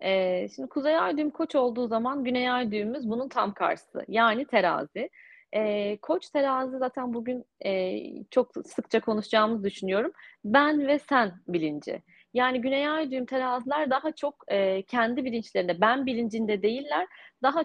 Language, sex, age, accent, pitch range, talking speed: Turkish, female, 30-49, native, 210-270 Hz, 140 wpm